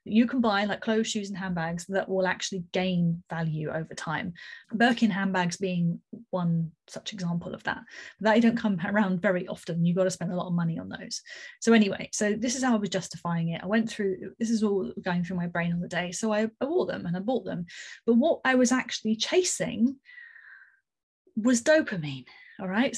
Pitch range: 190-240 Hz